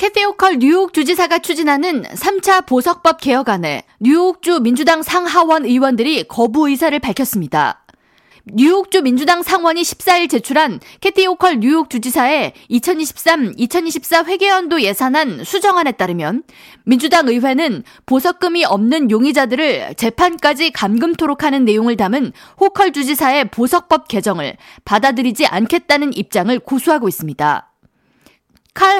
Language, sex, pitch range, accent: Korean, female, 235-330 Hz, native